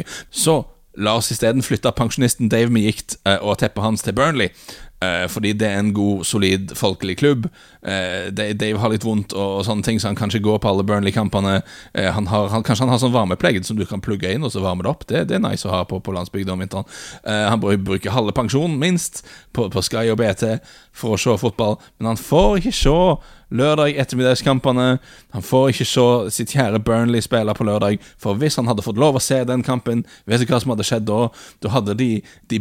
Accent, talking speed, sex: Norwegian, 220 wpm, male